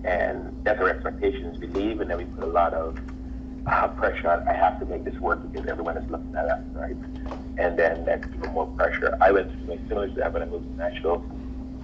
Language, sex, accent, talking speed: English, male, American, 235 wpm